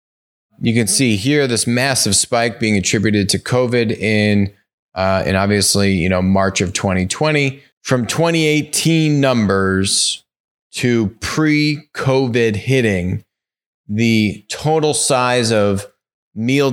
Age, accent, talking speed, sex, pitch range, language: 20-39, American, 110 wpm, male, 105-140 Hz, English